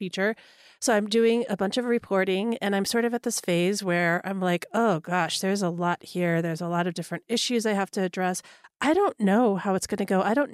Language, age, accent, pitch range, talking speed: English, 30-49, American, 190-240 Hz, 250 wpm